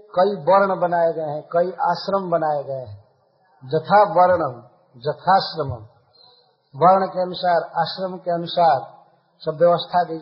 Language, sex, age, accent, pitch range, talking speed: Hindi, male, 50-69, native, 150-200 Hz, 125 wpm